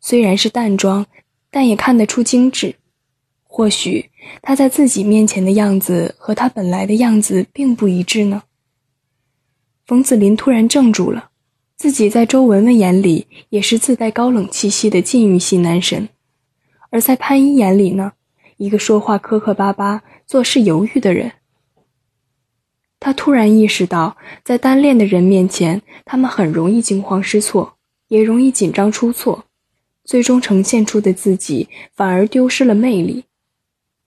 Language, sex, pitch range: Chinese, female, 195-245 Hz